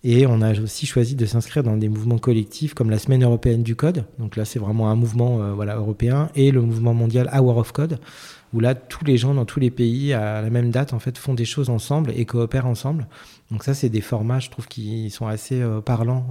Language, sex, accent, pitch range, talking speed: French, male, French, 110-130 Hz, 245 wpm